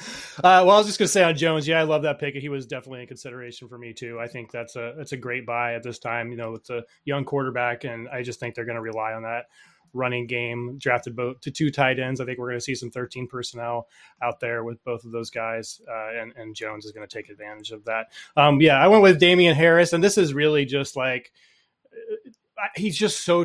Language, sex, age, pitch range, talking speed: English, male, 20-39, 120-150 Hz, 260 wpm